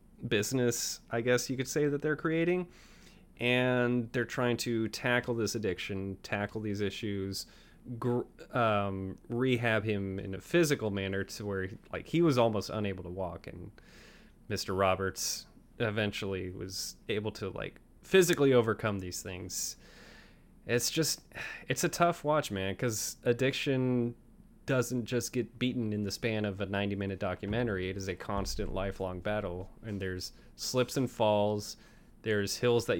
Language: English